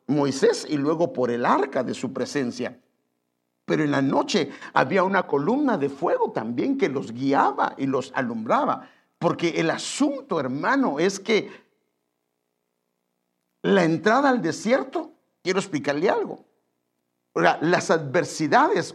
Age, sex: 50-69, male